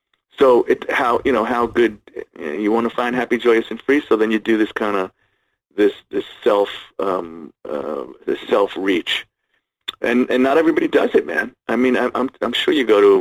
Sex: male